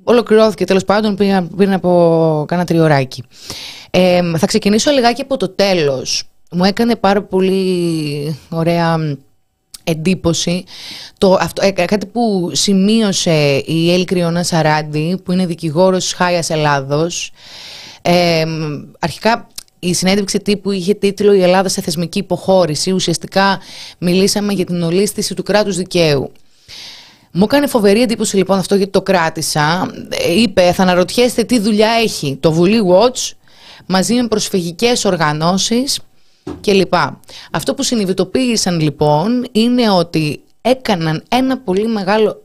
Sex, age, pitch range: female, 20-39, 165-210 Hz